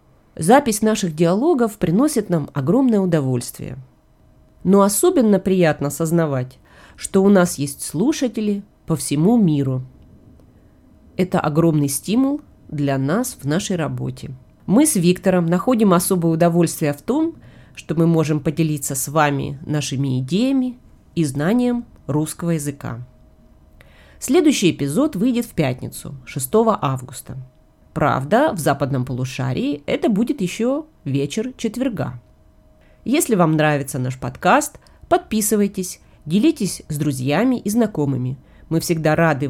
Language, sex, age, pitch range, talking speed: Russian, female, 30-49, 140-220 Hz, 115 wpm